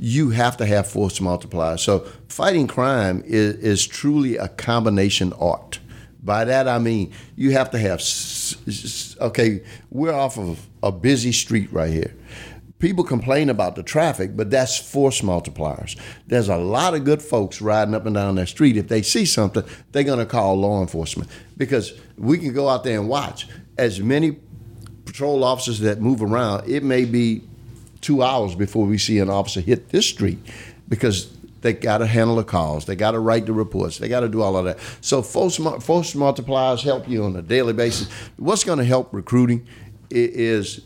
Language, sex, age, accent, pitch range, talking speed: English, male, 50-69, American, 100-125 Hz, 190 wpm